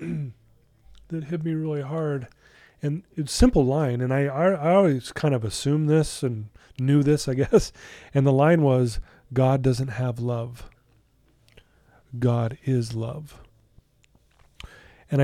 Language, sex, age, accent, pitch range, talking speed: English, male, 30-49, American, 120-145 Hz, 140 wpm